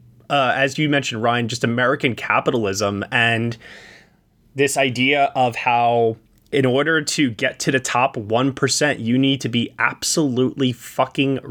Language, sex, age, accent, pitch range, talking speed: English, male, 20-39, American, 115-145 Hz, 140 wpm